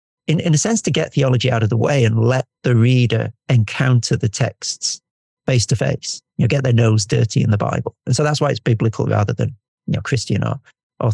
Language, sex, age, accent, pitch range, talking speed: English, male, 50-69, British, 115-145 Hz, 230 wpm